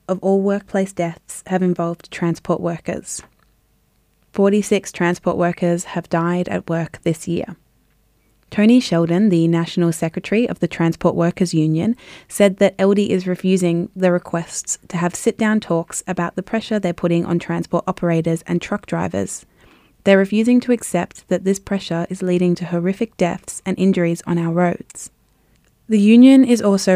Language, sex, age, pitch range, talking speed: English, female, 20-39, 170-200 Hz, 160 wpm